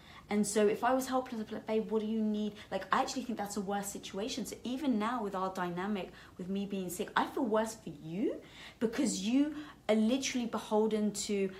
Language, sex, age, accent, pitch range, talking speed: English, female, 30-49, British, 165-220 Hz, 225 wpm